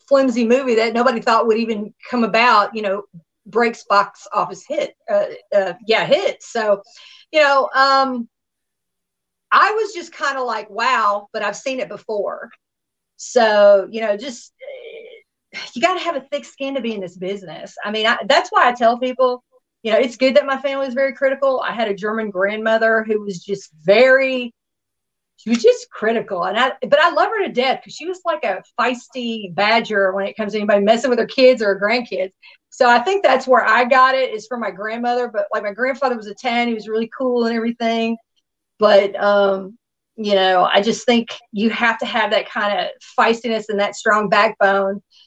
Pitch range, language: 210-275 Hz, English